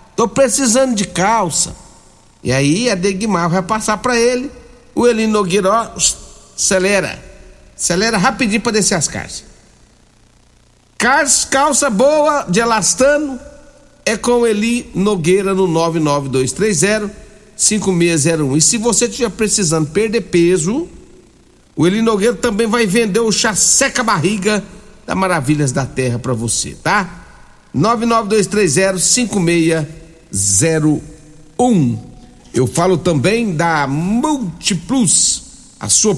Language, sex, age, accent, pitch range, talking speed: Portuguese, male, 60-79, Brazilian, 170-230 Hz, 110 wpm